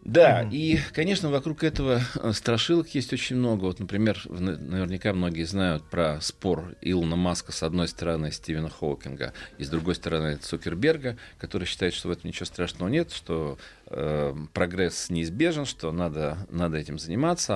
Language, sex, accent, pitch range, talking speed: Russian, male, native, 90-130 Hz, 155 wpm